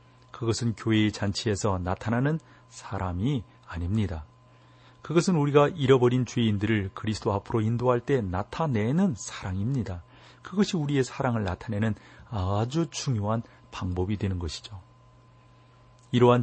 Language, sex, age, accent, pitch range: Korean, male, 40-59, native, 95-125 Hz